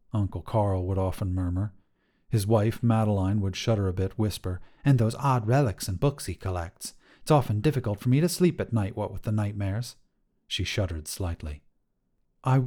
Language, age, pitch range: English, 40-59, 95-125 Hz